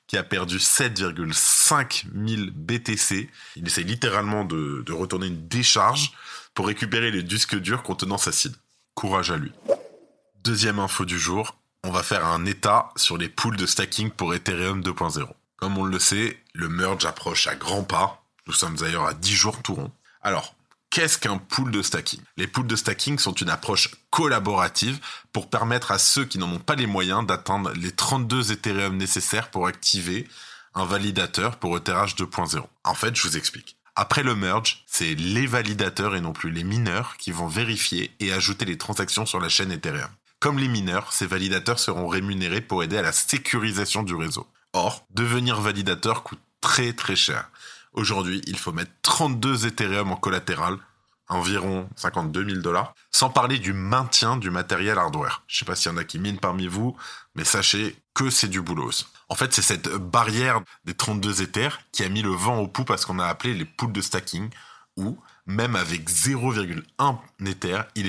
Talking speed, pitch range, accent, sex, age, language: 185 wpm, 95-115 Hz, French, male, 20-39, French